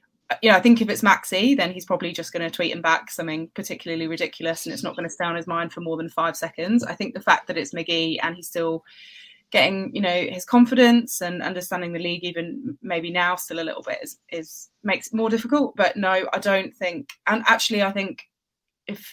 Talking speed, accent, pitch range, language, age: 240 wpm, British, 165-195 Hz, English, 20-39